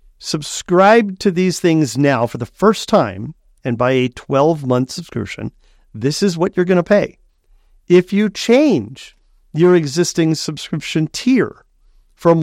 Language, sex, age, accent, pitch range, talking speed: English, male, 50-69, American, 120-165 Hz, 140 wpm